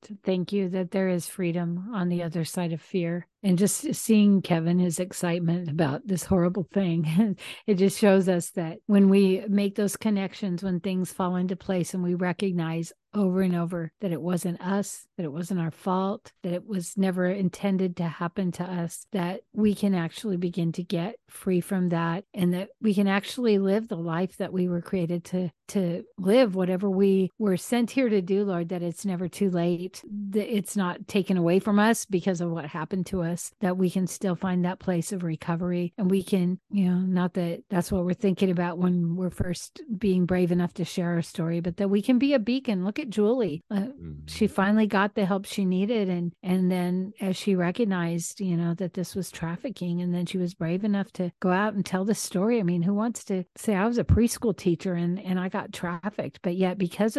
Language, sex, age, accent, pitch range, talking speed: English, female, 50-69, American, 175-200 Hz, 215 wpm